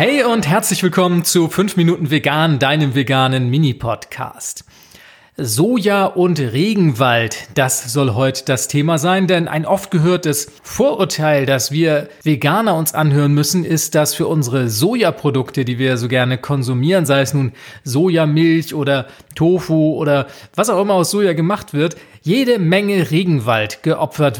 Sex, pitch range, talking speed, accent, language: male, 140-180 Hz, 145 wpm, German, German